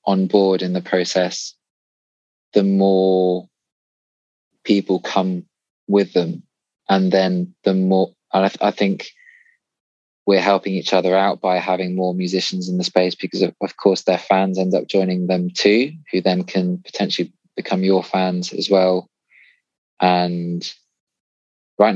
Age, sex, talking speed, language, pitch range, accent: 20-39, male, 145 wpm, English, 90-95 Hz, British